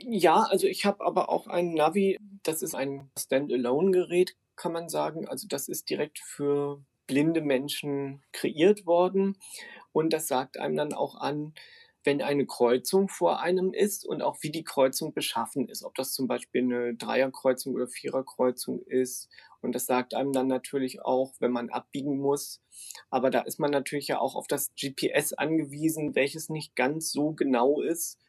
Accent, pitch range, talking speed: German, 130-155 Hz, 170 wpm